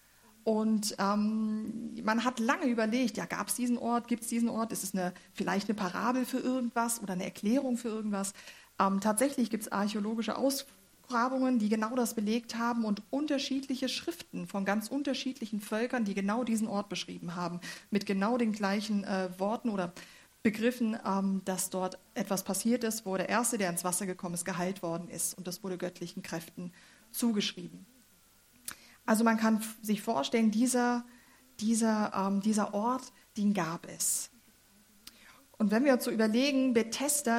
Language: German